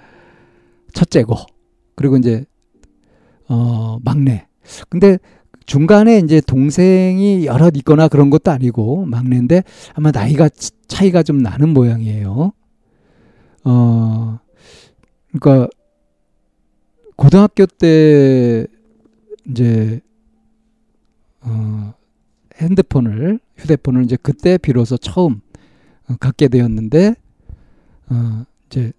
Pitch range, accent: 120-165 Hz, native